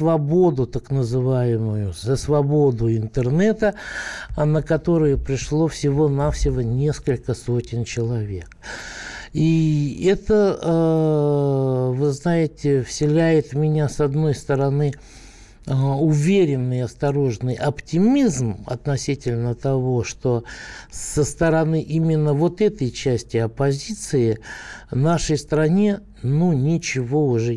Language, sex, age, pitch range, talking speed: Russian, male, 60-79, 120-155 Hz, 90 wpm